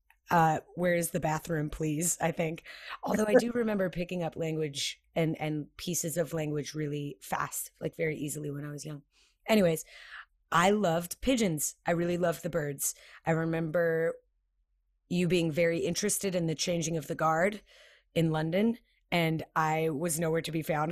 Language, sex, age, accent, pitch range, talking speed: English, female, 30-49, American, 165-200 Hz, 170 wpm